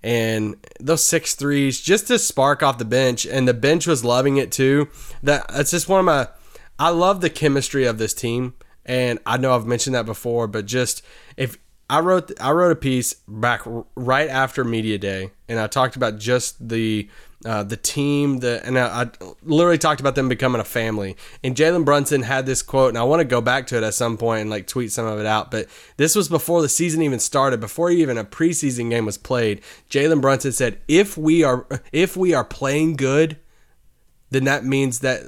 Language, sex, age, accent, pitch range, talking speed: English, male, 20-39, American, 120-150 Hz, 215 wpm